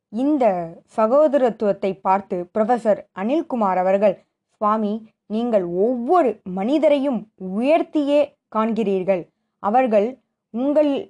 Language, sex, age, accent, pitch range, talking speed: Tamil, female, 20-39, native, 200-260 Hz, 75 wpm